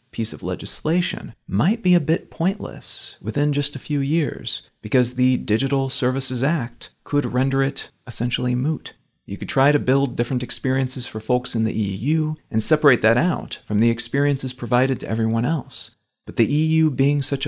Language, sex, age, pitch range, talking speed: English, male, 40-59, 120-145 Hz, 175 wpm